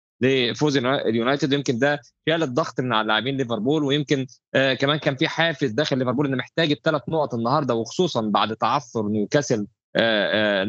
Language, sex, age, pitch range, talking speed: Arabic, male, 20-39, 115-150 Hz, 165 wpm